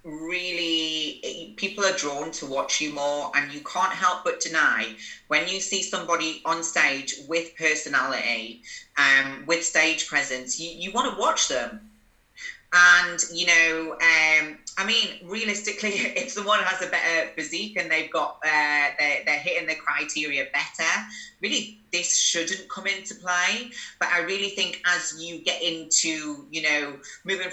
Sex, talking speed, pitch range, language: female, 160 wpm, 155-200 Hz, English